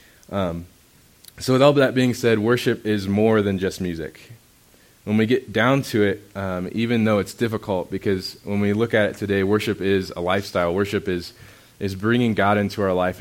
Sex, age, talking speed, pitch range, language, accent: male, 20-39, 195 wpm, 95-115 Hz, English, American